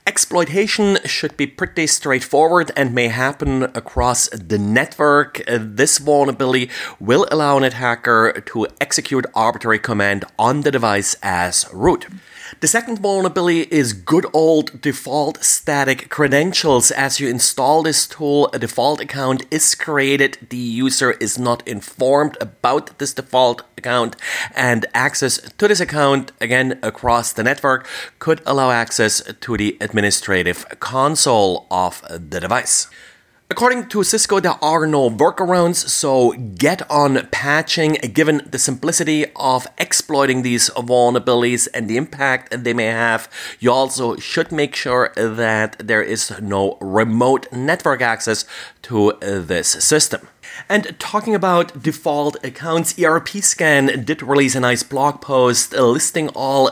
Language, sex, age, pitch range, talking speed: English, male, 30-49, 120-150 Hz, 135 wpm